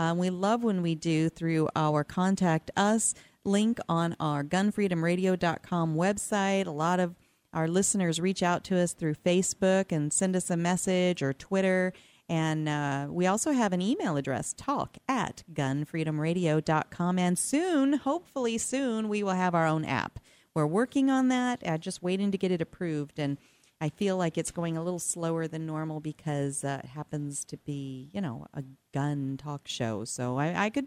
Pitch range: 155-195 Hz